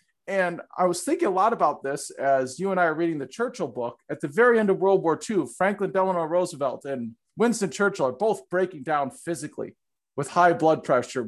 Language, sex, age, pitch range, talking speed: English, male, 40-59, 145-205 Hz, 215 wpm